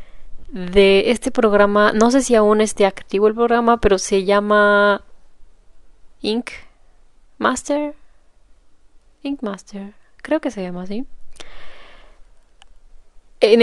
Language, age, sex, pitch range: Spanish, 20-39, female, 195-240 Hz